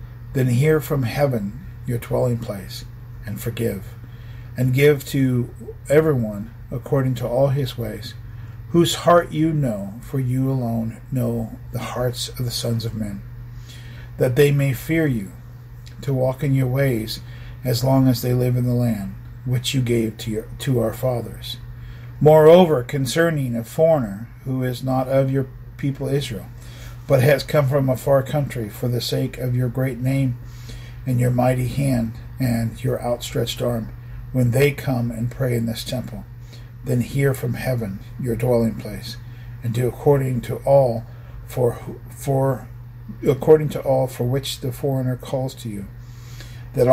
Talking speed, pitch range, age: 160 wpm, 120-135 Hz, 50-69